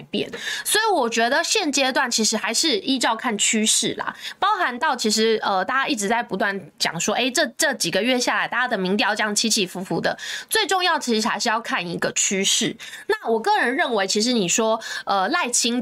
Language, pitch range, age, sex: Chinese, 210-330 Hz, 20-39, female